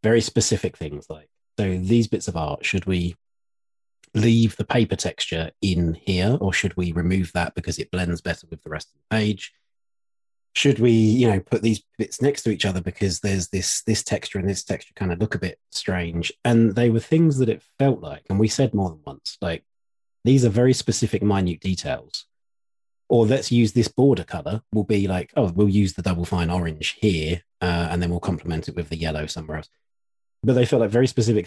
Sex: male